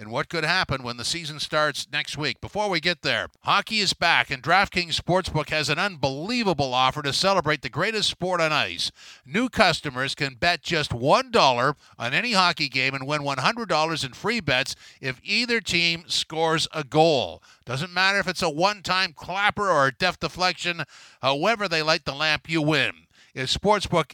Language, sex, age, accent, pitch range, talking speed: English, male, 50-69, American, 140-180 Hz, 180 wpm